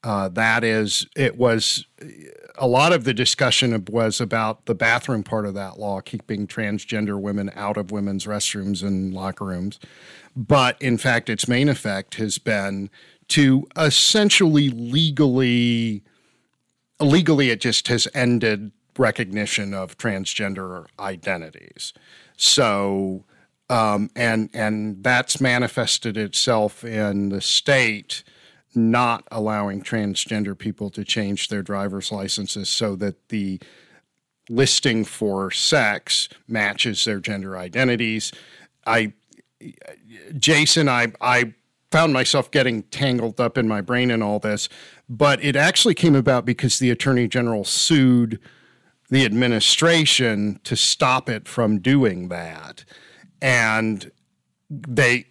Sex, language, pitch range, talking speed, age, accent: male, English, 105-130 Hz, 120 wpm, 50-69, American